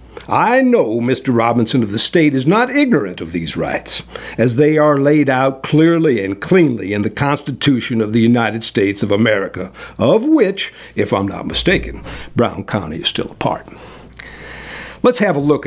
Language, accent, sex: English, American, male